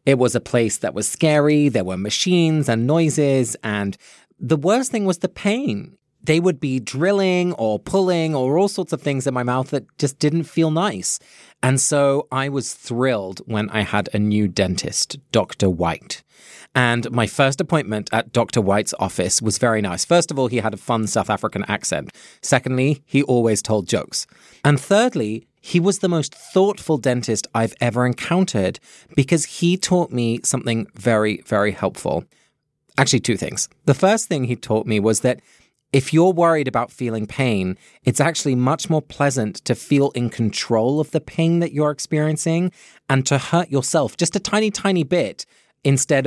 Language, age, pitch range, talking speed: English, 30-49, 115-165 Hz, 180 wpm